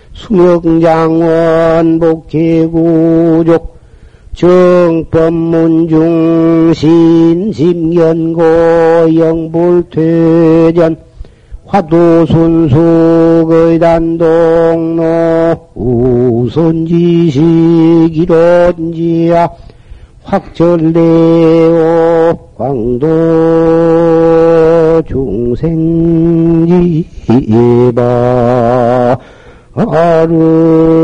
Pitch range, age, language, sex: 160-165 Hz, 50-69, Korean, male